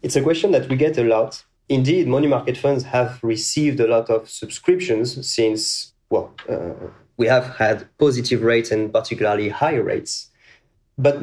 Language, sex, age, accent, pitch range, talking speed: English, male, 30-49, French, 115-140 Hz, 165 wpm